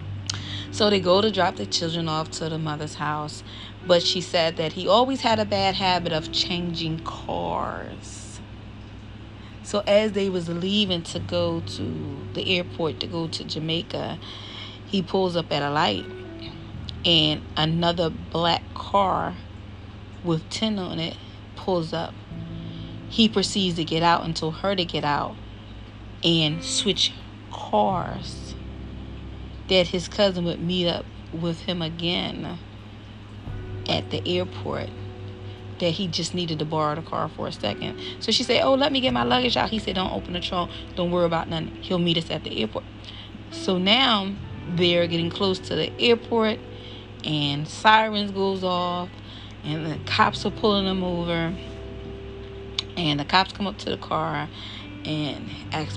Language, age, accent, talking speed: English, 30-49, American, 160 wpm